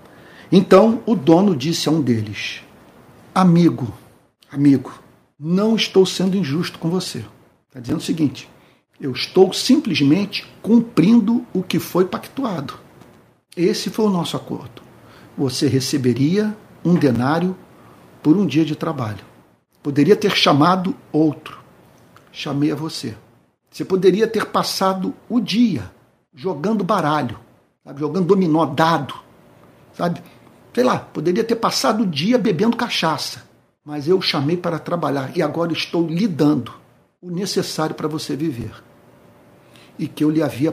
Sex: male